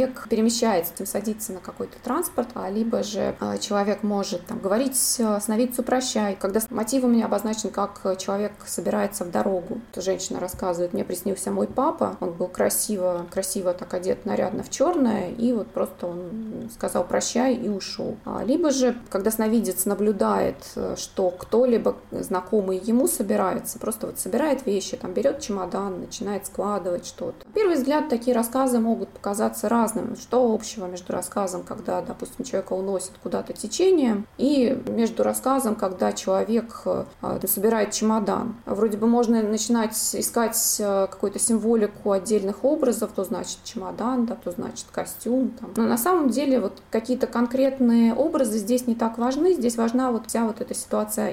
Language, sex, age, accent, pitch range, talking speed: Russian, female, 20-39, native, 200-245 Hz, 150 wpm